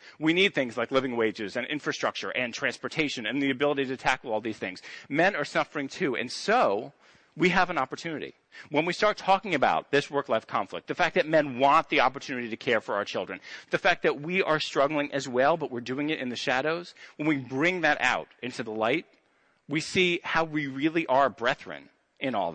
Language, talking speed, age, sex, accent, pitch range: English, 215 wpm, 40-59, male, American, 125-155 Hz